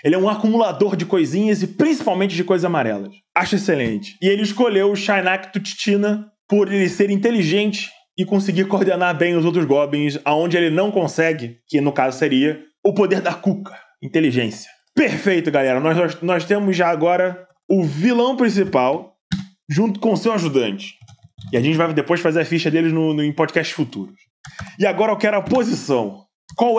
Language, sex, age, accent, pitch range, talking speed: Portuguese, male, 20-39, Brazilian, 160-200 Hz, 180 wpm